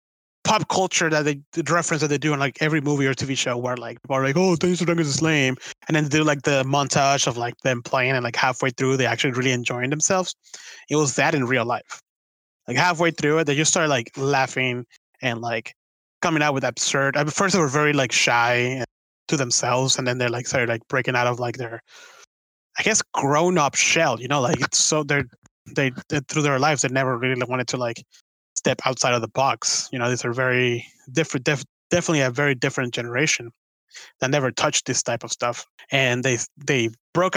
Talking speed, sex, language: 220 wpm, male, English